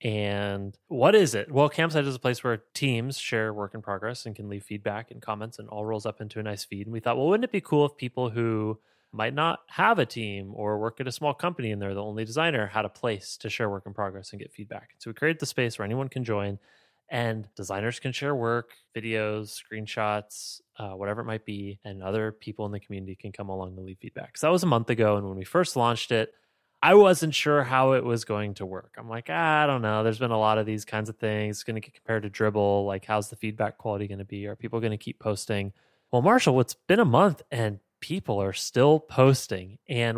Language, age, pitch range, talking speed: English, 20-39, 105-125 Hz, 250 wpm